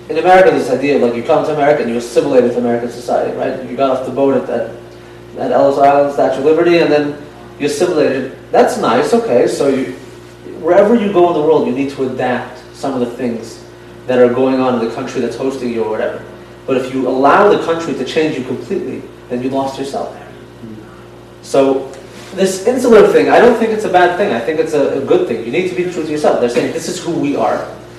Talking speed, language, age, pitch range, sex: 240 wpm, English, 30-49, 115-145 Hz, male